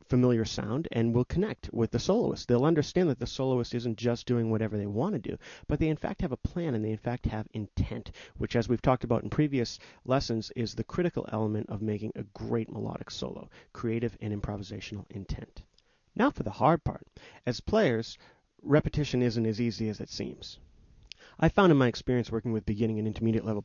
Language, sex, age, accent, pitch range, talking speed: English, male, 30-49, American, 110-125 Hz, 205 wpm